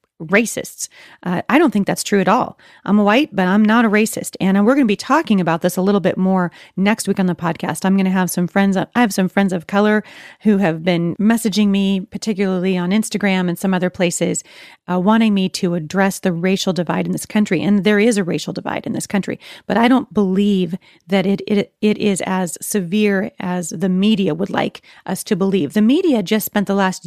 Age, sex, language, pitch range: 40-59, female, English, 180-215 Hz